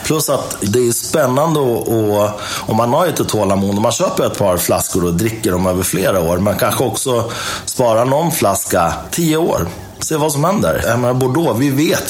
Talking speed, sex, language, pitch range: 195 wpm, male, Swedish, 85-115 Hz